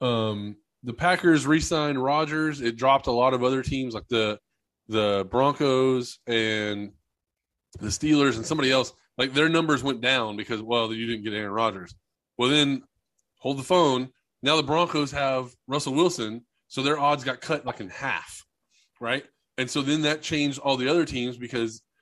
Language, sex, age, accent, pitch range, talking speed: English, male, 20-39, American, 115-150 Hz, 175 wpm